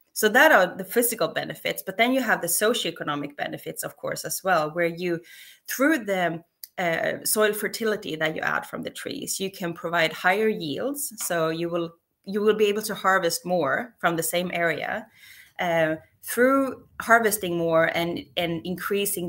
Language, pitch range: Swedish, 165-210 Hz